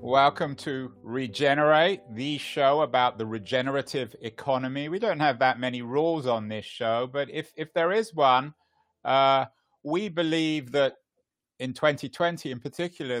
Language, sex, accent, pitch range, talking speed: English, male, British, 120-155 Hz, 145 wpm